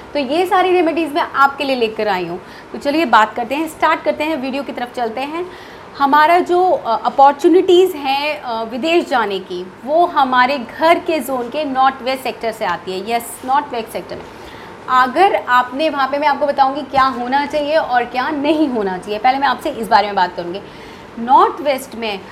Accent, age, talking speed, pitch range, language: native, 30-49, 195 wpm, 245-300 Hz, Hindi